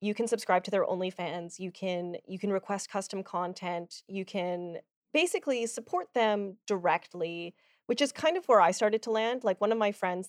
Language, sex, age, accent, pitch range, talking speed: English, female, 20-39, American, 185-235 Hz, 195 wpm